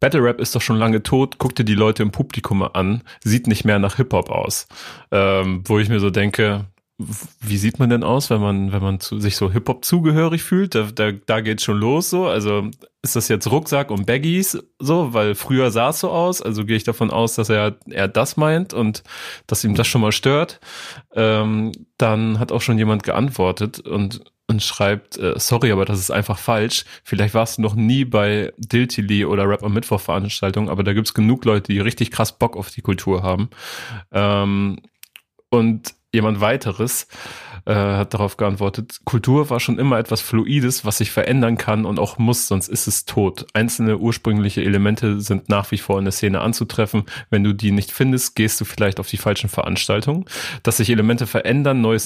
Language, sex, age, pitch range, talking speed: German, male, 30-49, 100-120 Hz, 205 wpm